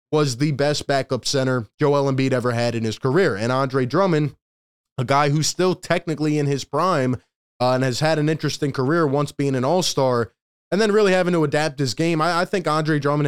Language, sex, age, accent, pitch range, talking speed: English, male, 20-39, American, 130-155 Hz, 210 wpm